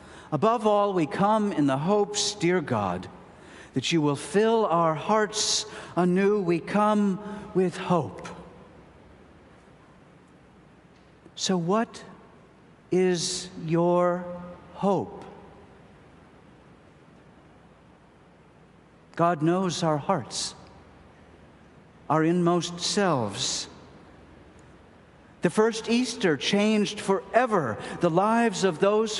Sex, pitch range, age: male, 135-195 Hz, 50-69